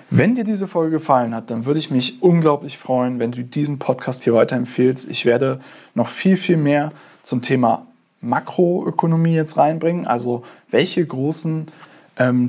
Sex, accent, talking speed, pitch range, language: male, German, 160 wpm, 125-160 Hz, German